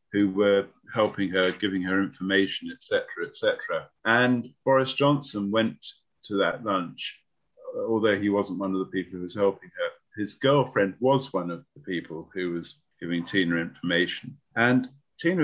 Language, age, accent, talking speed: English, 50-69, British, 165 wpm